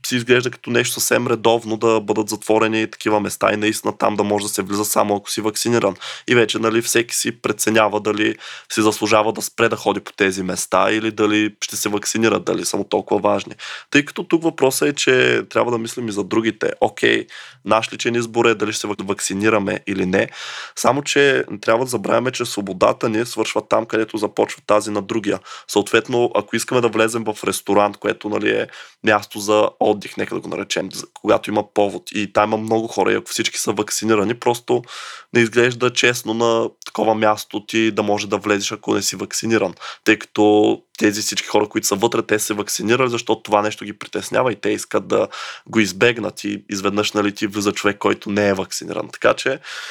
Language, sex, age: Bulgarian, male, 20-39